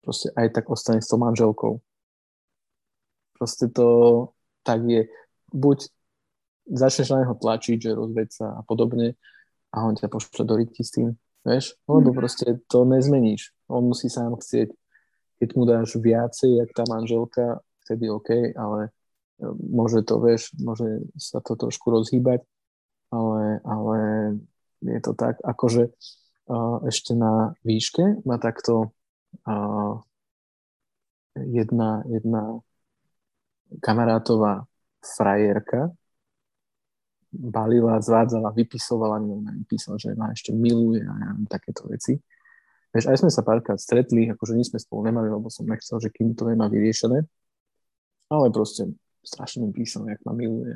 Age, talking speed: 20-39, 130 wpm